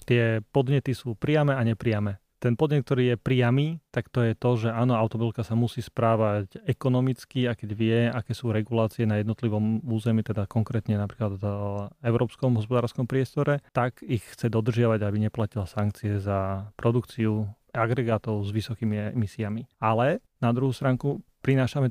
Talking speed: 155 wpm